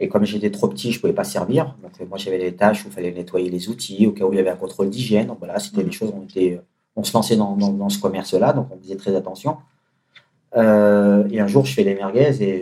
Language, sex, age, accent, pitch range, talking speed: French, male, 30-49, French, 95-125 Hz, 280 wpm